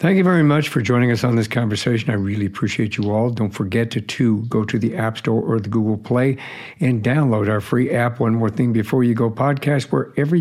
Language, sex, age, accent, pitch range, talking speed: English, male, 60-79, American, 110-130 Hz, 235 wpm